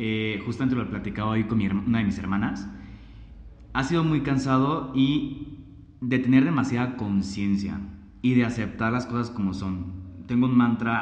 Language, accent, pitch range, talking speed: Spanish, Mexican, 105-130 Hz, 170 wpm